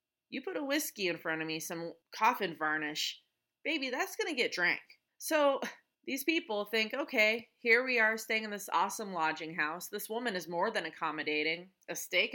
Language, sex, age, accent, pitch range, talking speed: English, female, 30-49, American, 195-295 Hz, 190 wpm